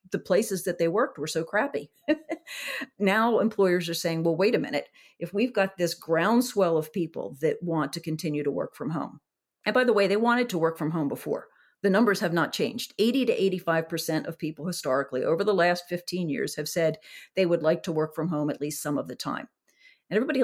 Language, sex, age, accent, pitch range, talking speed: English, female, 40-59, American, 155-200 Hz, 220 wpm